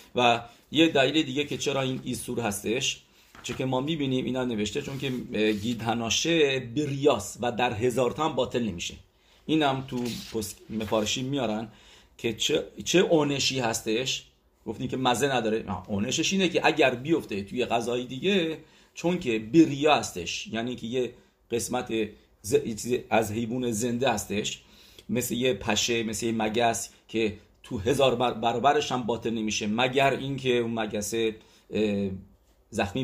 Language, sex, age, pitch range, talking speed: English, male, 40-59, 110-140 Hz, 140 wpm